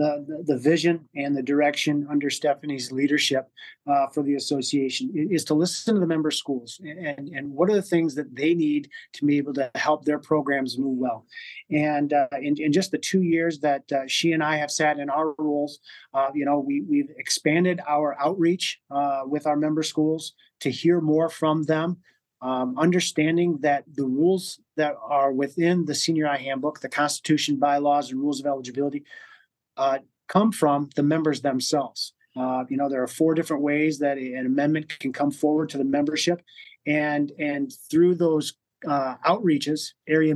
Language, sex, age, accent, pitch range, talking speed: English, male, 30-49, American, 140-165 Hz, 185 wpm